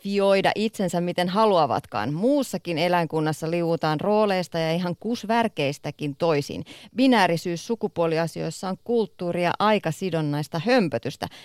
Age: 30-49